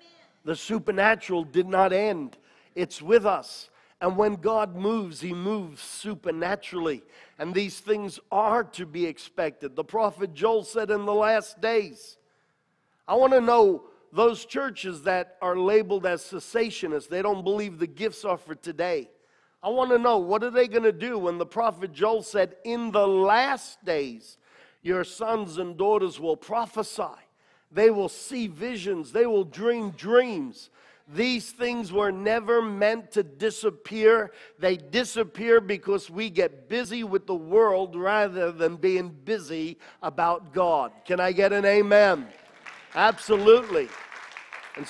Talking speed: 150 wpm